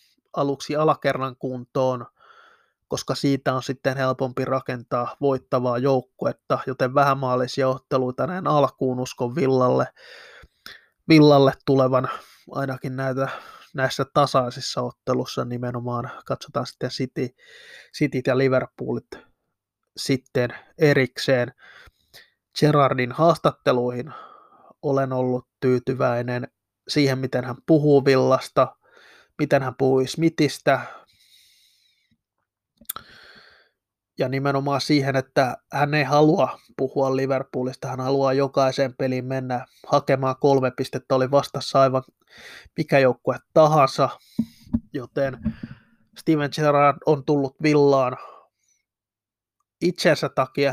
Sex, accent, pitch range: male, native, 130-145 Hz